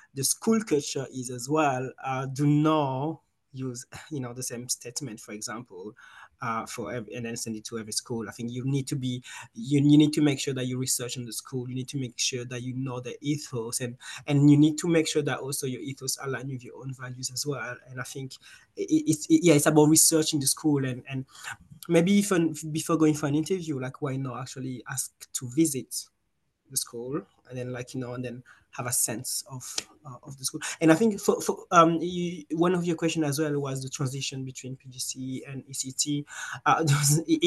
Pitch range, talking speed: 125-155 Hz, 225 wpm